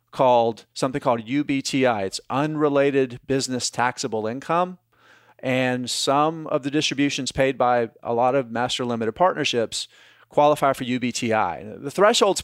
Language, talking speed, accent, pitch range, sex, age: English, 130 wpm, American, 120-145 Hz, male, 40-59